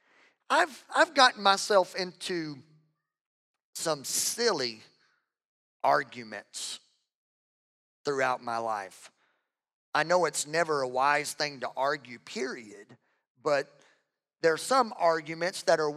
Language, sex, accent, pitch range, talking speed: English, male, American, 160-210 Hz, 105 wpm